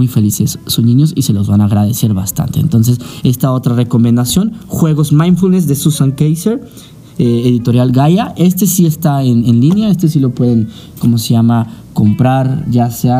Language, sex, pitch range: Spanish, male, 120-160 Hz